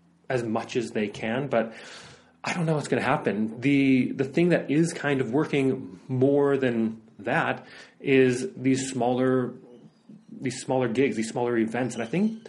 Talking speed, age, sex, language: 175 wpm, 30-49, male, English